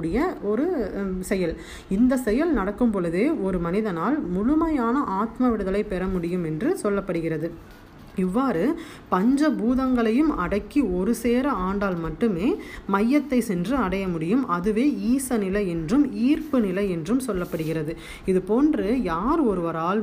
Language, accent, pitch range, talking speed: Tamil, native, 180-245 Hz, 110 wpm